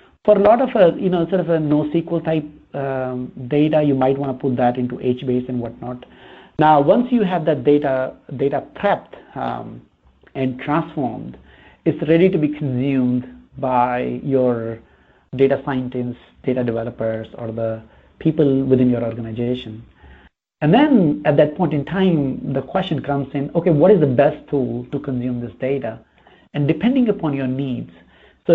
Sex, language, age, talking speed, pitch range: male, English, 60-79, 165 wpm, 125-155 Hz